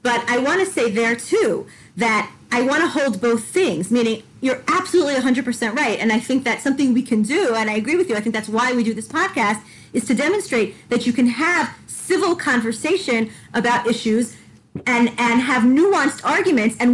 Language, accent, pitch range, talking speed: English, American, 215-275 Hz, 200 wpm